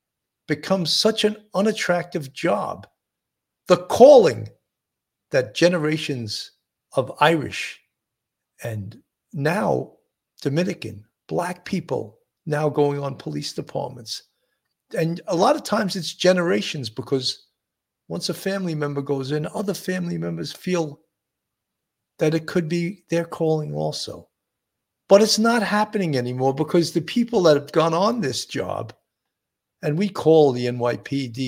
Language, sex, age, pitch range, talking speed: English, male, 50-69, 130-185 Hz, 125 wpm